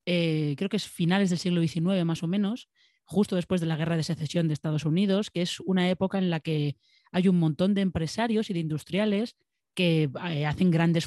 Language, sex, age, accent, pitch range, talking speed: Spanish, female, 30-49, Spanish, 160-195 Hz, 215 wpm